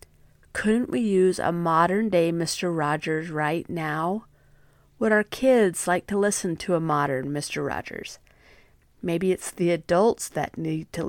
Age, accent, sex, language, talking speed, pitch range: 40-59, American, female, English, 145 wpm, 160-200 Hz